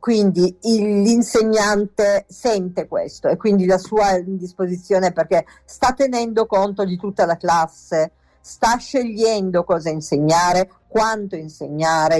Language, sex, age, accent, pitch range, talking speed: Italian, female, 50-69, native, 180-225 Hz, 120 wpm